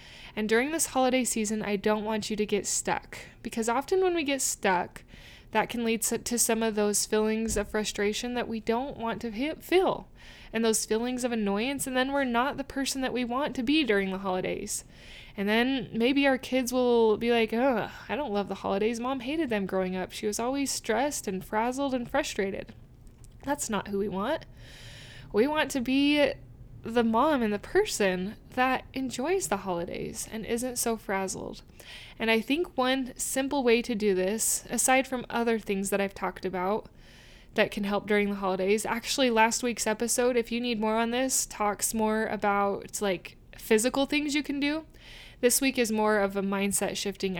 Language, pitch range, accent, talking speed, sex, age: English, 205-255 Hz, American, 190 wpm, female, 20-39